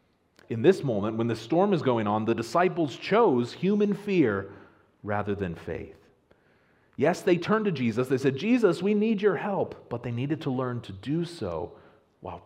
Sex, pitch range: male, 90-115 Hz